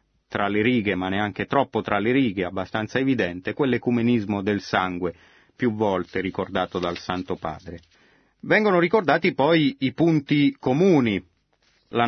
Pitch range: 100-130 Hz